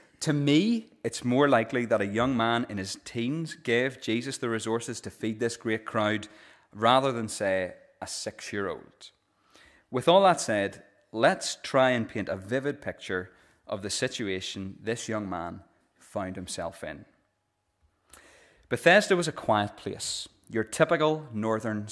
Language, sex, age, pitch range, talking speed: English, male, 30-49, 105-135 Hz, 155 wpm